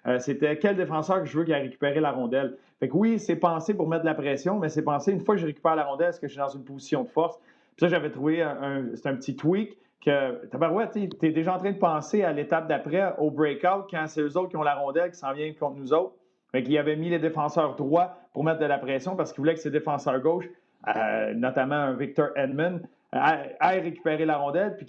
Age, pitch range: 40-59, 140-170 Hz